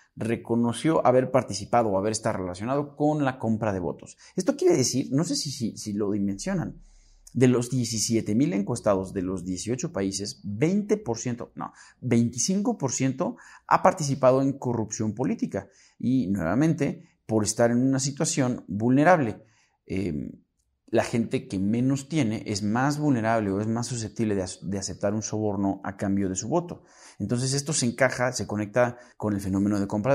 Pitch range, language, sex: 100-135 Hz, Spanish, male